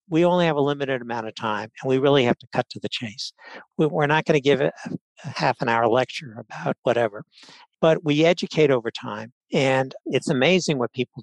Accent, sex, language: American, male, English